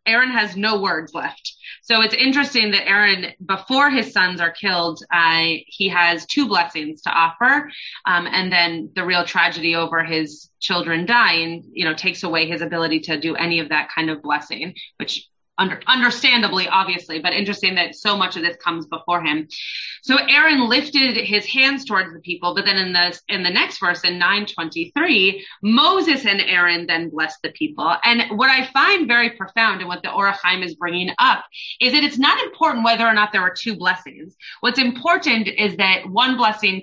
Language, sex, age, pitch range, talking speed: English, female, 30-49, 175-240 Hz, 190 wpm